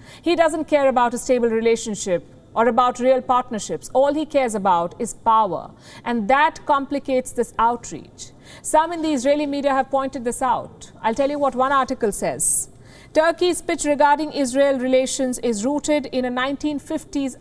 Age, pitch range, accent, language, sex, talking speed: 50-69, 230-280 Hz, Indian, English, female, 165 wpm